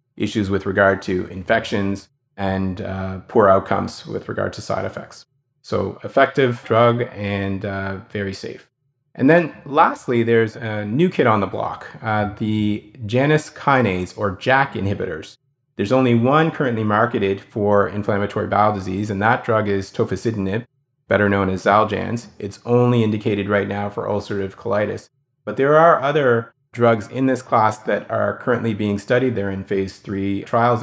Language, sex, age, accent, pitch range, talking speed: English, male, 30-49, American, 100-125 Hz, 160 wpm